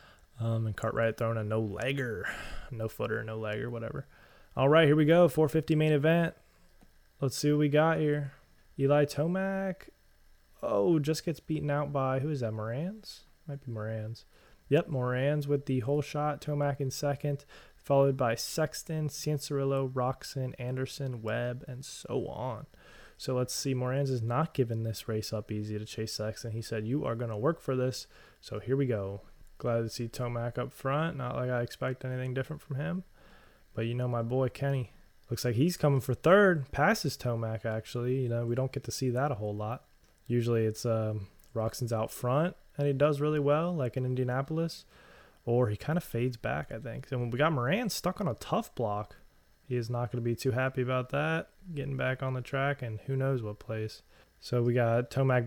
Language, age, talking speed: English, 20-39, 195 wpm